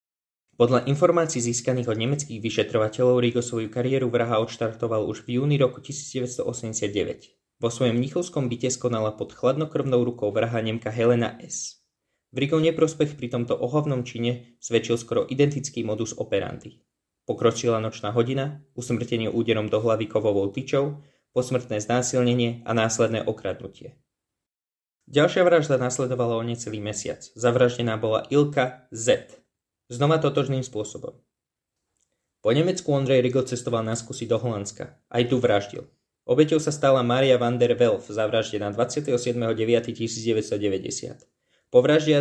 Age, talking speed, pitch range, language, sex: 20-39, 130 wpm, 115-135 Hz, Slovak, male